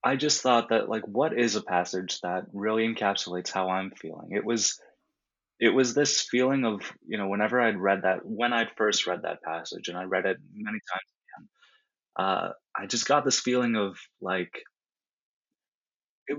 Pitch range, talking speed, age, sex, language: 100-120 Hz, 185 wpm, 20-39, male, English